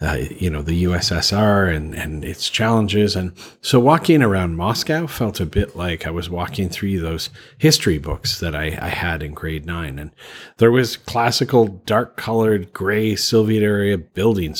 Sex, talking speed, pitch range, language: male, 175 wpm, 90-115 Hz, English